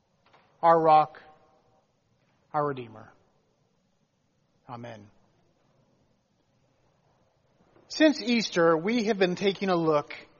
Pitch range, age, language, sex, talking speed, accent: 170-210 Hz, 40-59, English, male, 75 wpm, American